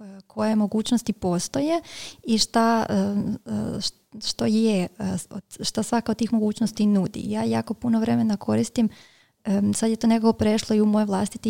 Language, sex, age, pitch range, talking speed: Croatian, female, 20-39, 195-220 Hz, 140 wpm